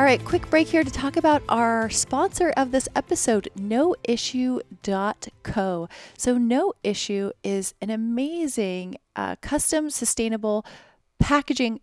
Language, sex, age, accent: English, female, 30-49, American